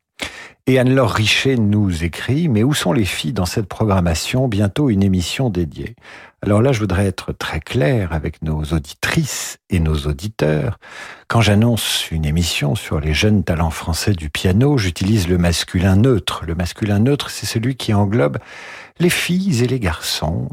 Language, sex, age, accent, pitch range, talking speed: French, male, 50-69, French, 85-115 Hz, 175 wpm